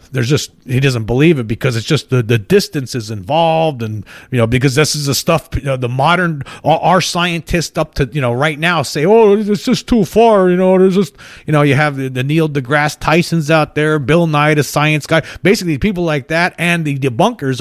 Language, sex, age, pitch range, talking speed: English, male, 40-59, 120-165 Hz, 235 wpm